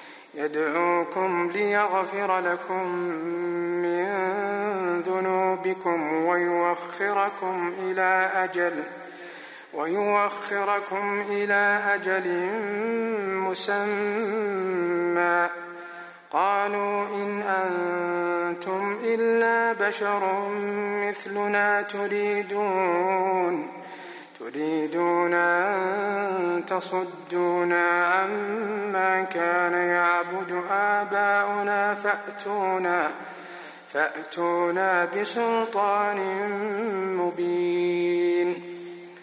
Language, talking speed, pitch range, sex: Arabic, 45 wpm, 175-205 Hz, male